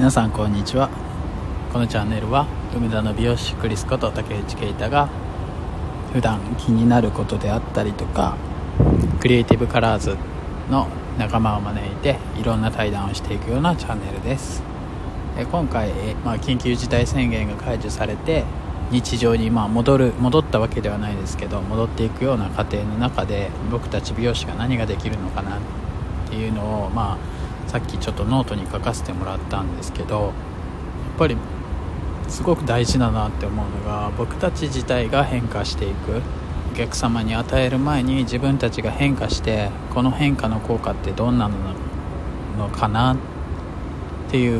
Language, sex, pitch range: Japanese, male, 90-120 Hz